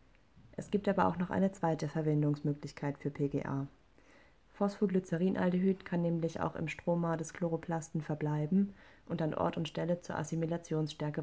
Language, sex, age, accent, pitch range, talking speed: German, female, 30-49, German, 150-175 Hz, 140 wpm